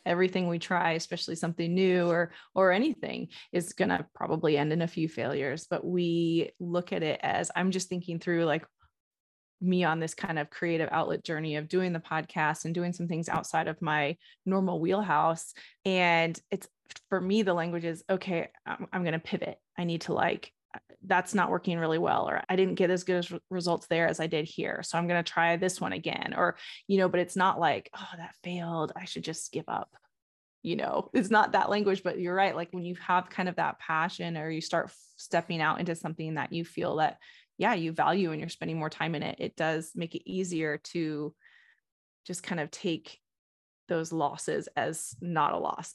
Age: 20-39